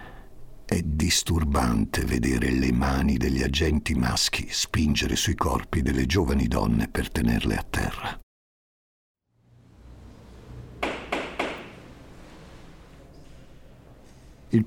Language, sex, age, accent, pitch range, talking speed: Italian, male, 50-69, native, 80-115 Hz, 80 wpm